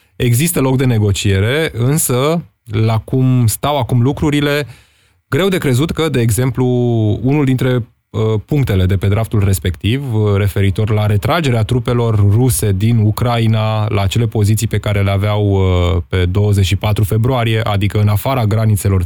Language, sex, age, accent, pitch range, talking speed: Romanian, male, 20-39, native, 100-125 Hz, 150 wpm